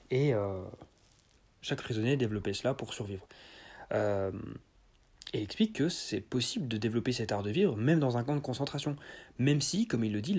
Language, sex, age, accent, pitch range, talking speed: French, male, 30-49, French, 110-150 Hz, 185 wpm